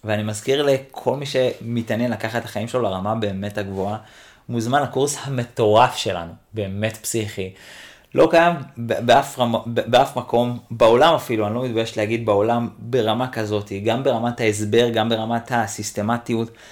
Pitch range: 110-135 Hz